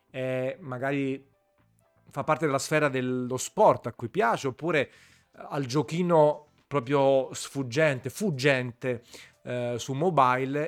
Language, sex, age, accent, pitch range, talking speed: Italian, male, 30-49, native, 120-145 Hz, 110 wpm